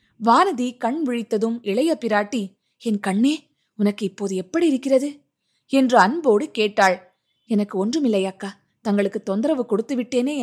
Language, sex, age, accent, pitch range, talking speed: Tamil, female, 20-39, native, 190-255 Hz, 115 wpm